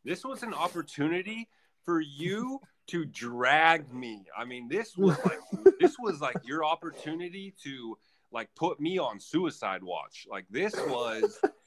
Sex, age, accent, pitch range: male, 30-49, American, 130-190 Hz